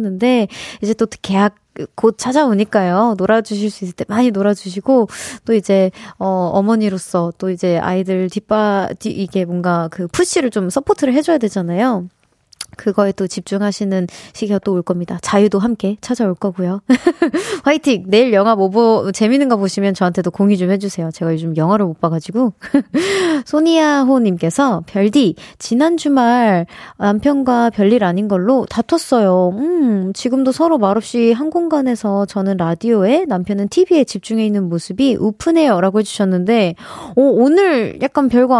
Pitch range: 195-260 Hz